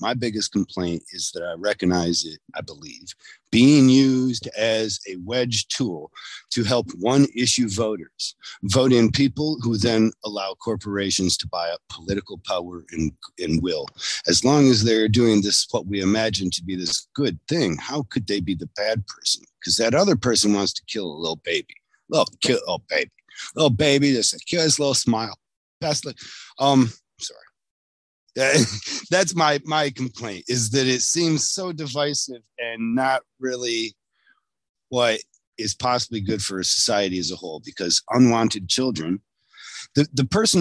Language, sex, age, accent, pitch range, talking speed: English, male, 50-69, American, 95-130 Hz, 160 wpm